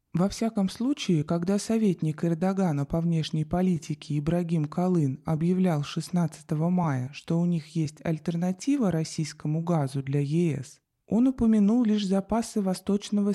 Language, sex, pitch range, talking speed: Russian, male, 155-210 Hz, 125 wpm